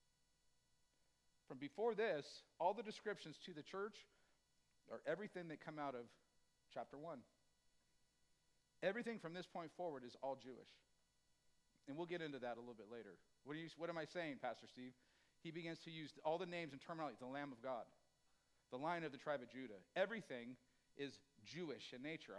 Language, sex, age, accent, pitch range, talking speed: English, male, 50-69, American, 145-195 Hz, 180 wpm